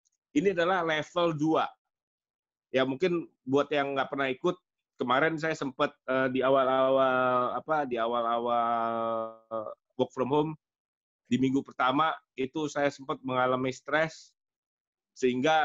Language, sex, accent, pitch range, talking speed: Indonesian, male, native, 120-145 Hz, 125 wpm